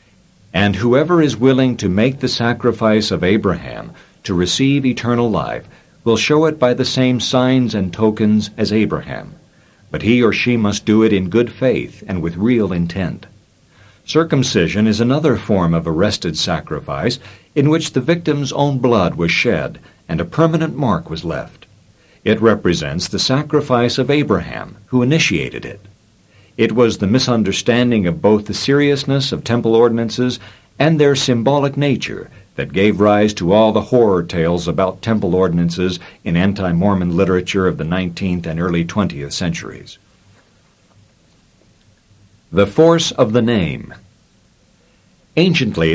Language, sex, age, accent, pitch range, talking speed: English, male, 60-79, American, 95-130 Hz, 145 wpm